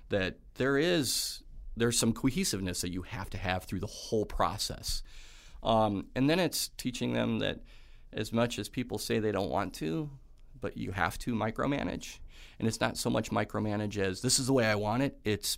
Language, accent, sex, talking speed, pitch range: English, American, male, 195 wpm, 90-115 Hz